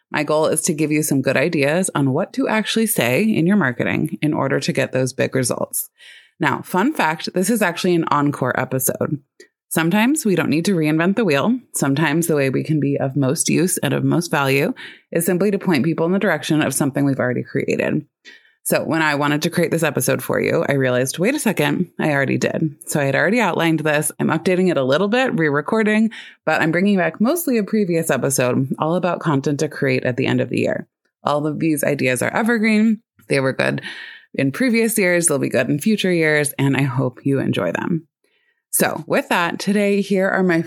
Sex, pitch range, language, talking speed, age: female, 140-190 Hz, English, 220 wpm, 20-39